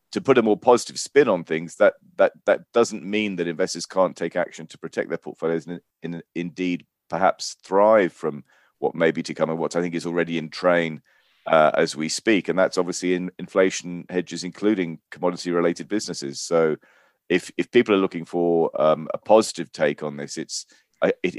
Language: English